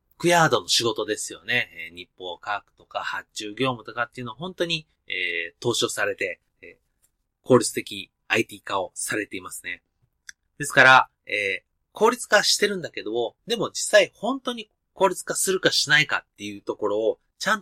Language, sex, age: Japanese, male, 30-49